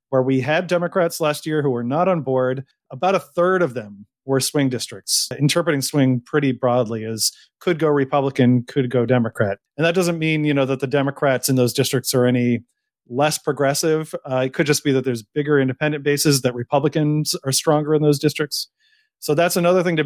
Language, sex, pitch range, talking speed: English, male, 130-160 Hz, 205 wpm